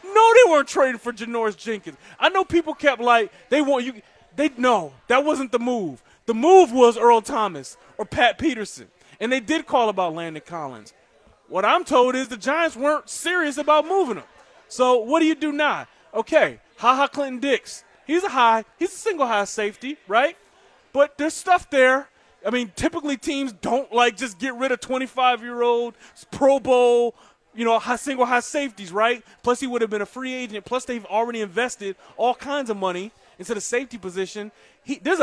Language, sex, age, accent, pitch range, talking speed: English, male, 30-49, American, 205-275 Hz, 185 wpm